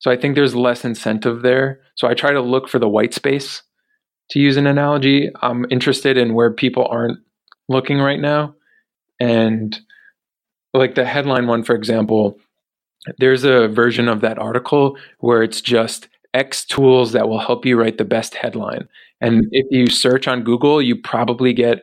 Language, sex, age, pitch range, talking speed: English, male, 20-39, 115-130 Hz, 175 wpm